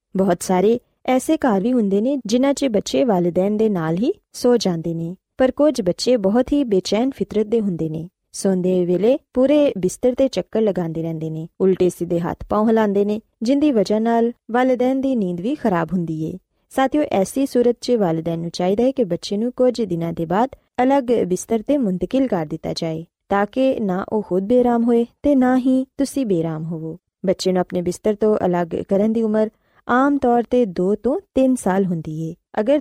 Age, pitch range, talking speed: 20-39, 185-250 Hz, 80 wpm